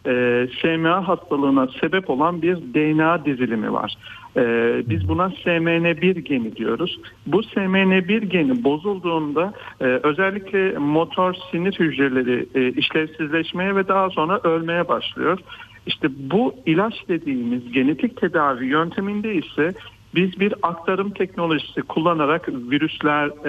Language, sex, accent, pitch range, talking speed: Turkish, male, native, 140-190 Hz, 115 wpm